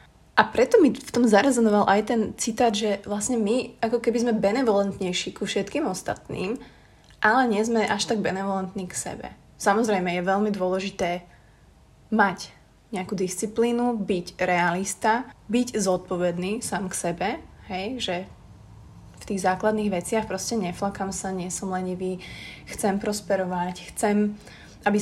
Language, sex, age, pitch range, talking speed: Slovak, female, 20-39, 185-225 Hz, 135 wpm